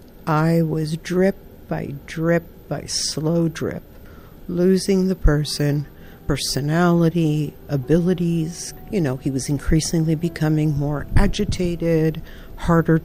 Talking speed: 100 wpm